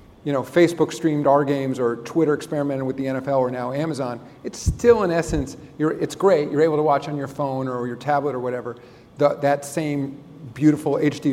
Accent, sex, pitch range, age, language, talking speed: American, male, 135-160 Hz, 40-59, English, 195 wpm